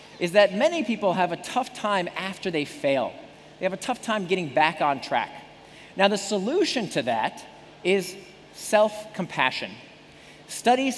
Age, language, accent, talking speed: 40-59, English, American, 155 wpm